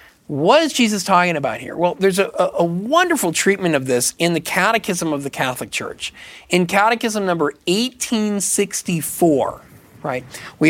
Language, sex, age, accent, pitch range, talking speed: English, male, 40-59, American, 150-230 Hz, 150 wpm